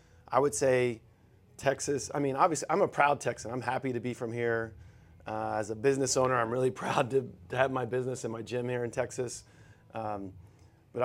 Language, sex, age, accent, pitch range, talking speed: English, male, 30-49, American, 110-130 Hz, 205 wpm